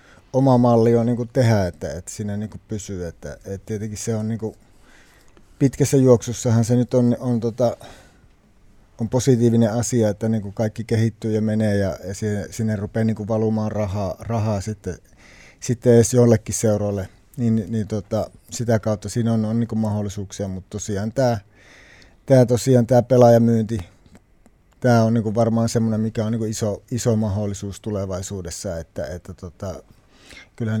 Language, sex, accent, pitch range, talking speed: Finnish, male, native, 105-115 Hz, 155 wpm